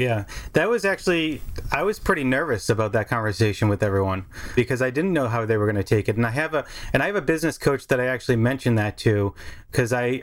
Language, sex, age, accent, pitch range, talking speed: English, male, 30-49, American, 110-130 Hz, 245 wpm